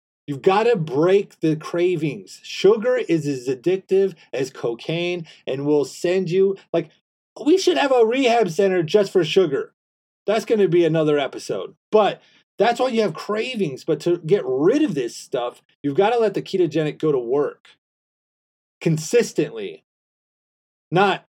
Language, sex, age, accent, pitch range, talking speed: English, male, 30-49, American, 160-220 Hz, 160 wpm